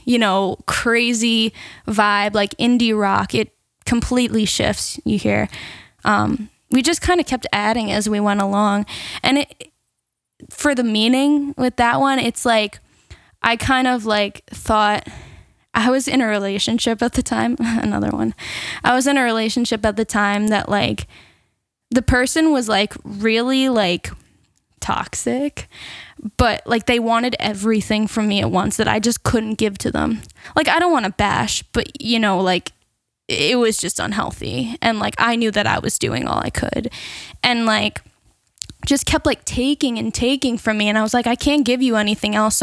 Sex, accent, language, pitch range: female, American, English, 210-250 Hz